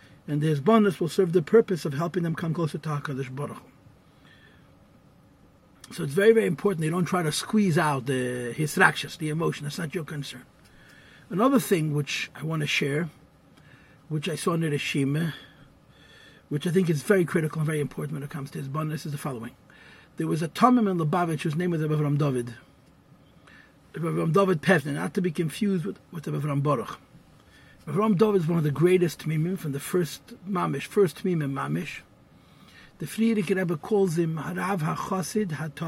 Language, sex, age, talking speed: English, male, 50-69, 180 wpm